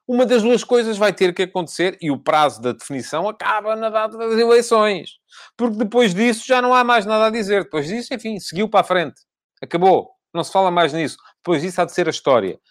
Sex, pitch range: male, 145-210 Hz